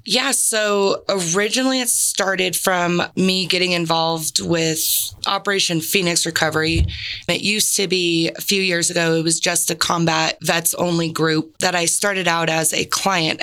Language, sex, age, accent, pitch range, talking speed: English, female, 20-39, American, 160-180 Hz, 160 wpm